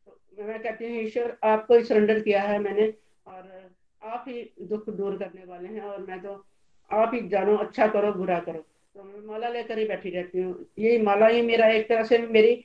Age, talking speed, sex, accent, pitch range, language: 50-69, 80 wpm, female, native, 205-235 Hz, Hindi